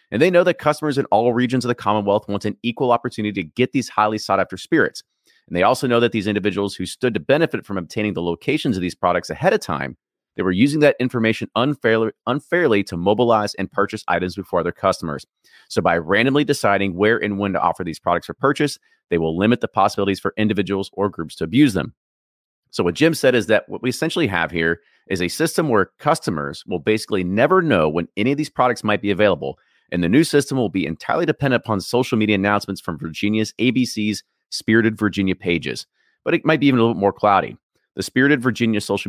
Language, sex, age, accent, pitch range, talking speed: English, male, 30-49, American, 100-125 Hz, 220 wpm